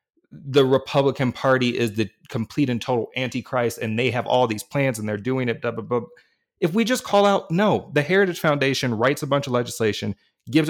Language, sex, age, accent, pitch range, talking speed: English, male, 30-49, American, 115-150 Hz, 210 wpm